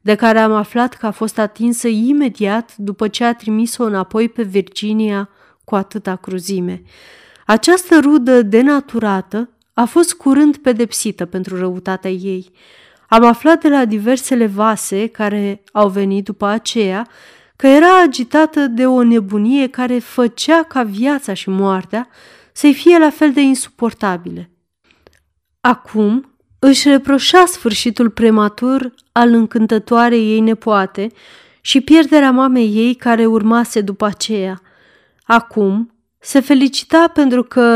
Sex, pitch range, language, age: female, 205-255 Hz, Romanian, 30-49